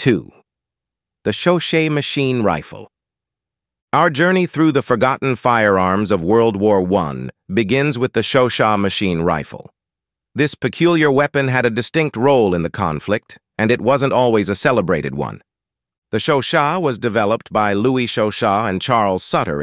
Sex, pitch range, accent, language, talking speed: male, 100-130 Hz, American, English, 145 wpm